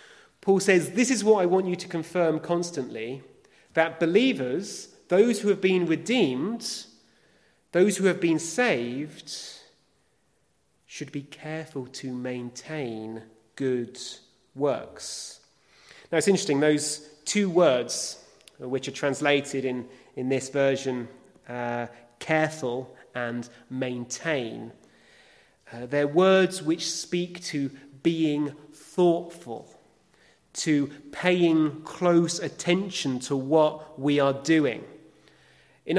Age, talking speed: 30-49, 110 wpm